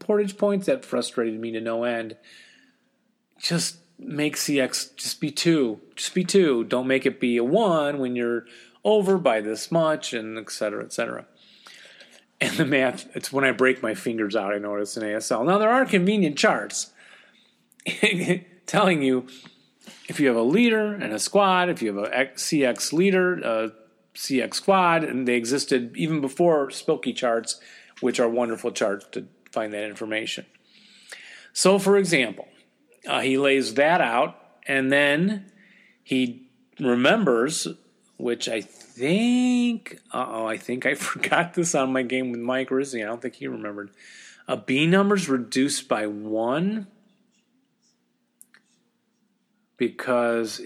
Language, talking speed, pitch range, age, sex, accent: English, 145 wpm, 115-195 Hz, 30-49, male, American